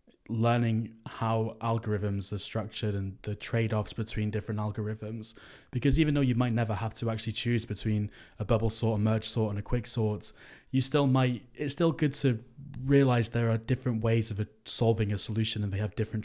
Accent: British